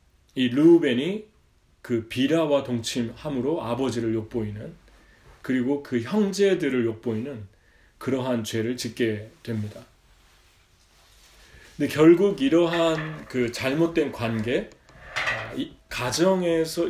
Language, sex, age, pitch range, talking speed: English, male, 30-49, 115-150 Hz, 80 wpm